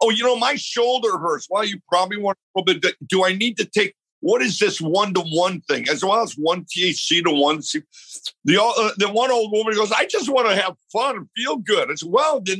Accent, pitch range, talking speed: American, 155-225 Hz, 250 wpm